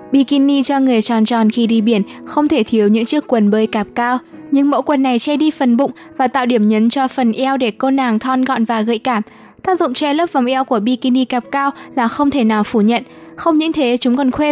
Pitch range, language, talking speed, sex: 235-280 Hz, Vietnamese, 255 wpm, female